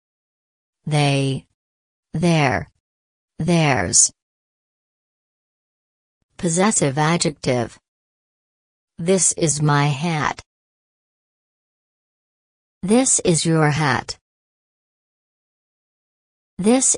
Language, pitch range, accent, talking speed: English, 130-175 Hz, American, 50 wpm